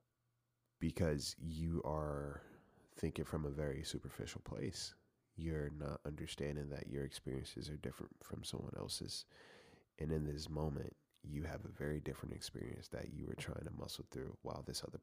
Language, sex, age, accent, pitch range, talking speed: English, male, 30-49, American, 75-110 Hz, 160 wpm